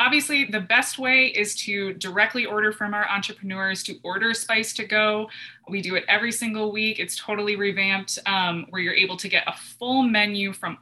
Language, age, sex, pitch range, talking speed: English, 20-39, female, 195-245 Hz, 195 wpm